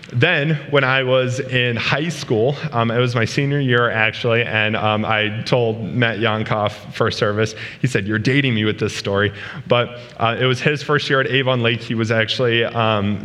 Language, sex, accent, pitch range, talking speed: English, male, American, 110-130 Hz, 200 wpm